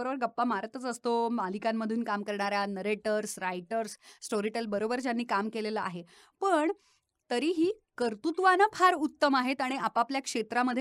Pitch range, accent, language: 210-280 Hz, native, Marathi